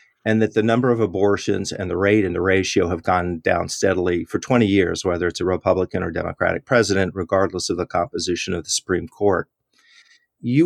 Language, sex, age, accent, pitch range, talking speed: English, male, 40-59, American, 95-120 Hz, 195 wpm